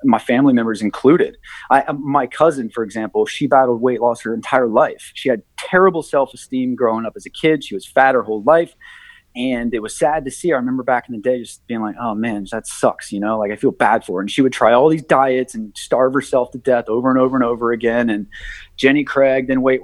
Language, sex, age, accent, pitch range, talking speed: English, male, 30-49, American, 120-150 Hz, 245 wpm